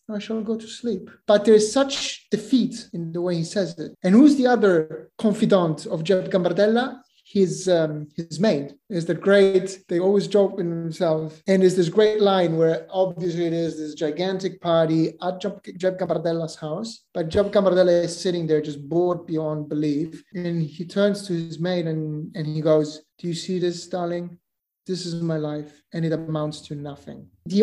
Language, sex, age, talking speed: English, male, 30-49, 185 wpm